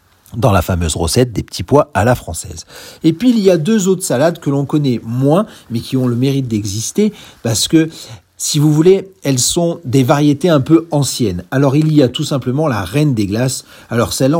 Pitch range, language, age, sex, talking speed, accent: 110-150 Hz, French, 40-59, male, 215 wpm, French